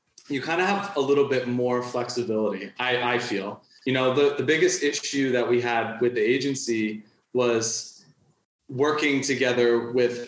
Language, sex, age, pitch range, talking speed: English, male, 20-39, 120-140 Hz, 165 wpm